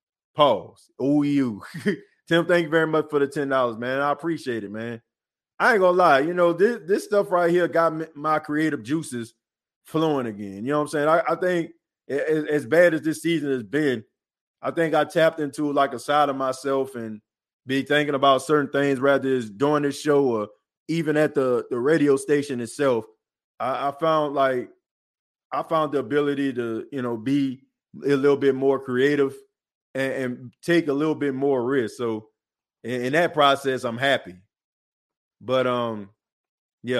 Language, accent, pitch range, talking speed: English, American, 130-155 Hz, 185 wpm